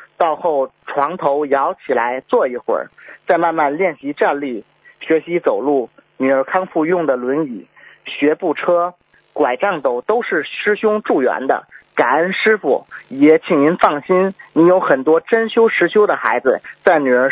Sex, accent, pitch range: male, native, 145-195 Hz